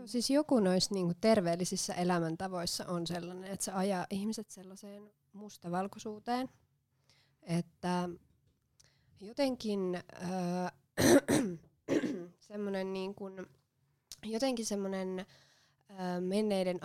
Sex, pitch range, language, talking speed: female, 170-195 Hz, Finnish, 60 wpm